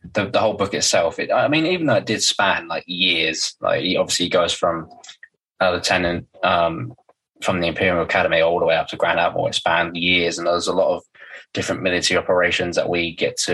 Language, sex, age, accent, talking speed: English, male, 20-39, British, 215 wpm